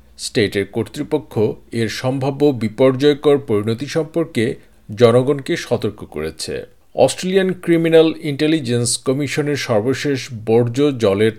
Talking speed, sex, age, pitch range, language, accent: 90 wpm, male, 50-69, 110-145 Hz, Bengali, native